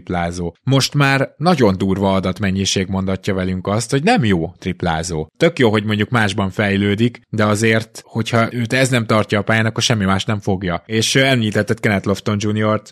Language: Hungarian